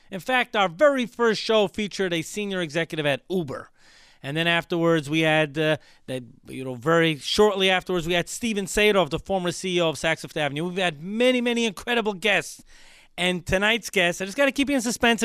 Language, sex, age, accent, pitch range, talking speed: English, male, 30-49, American, 170-235 Hz, 205 wpm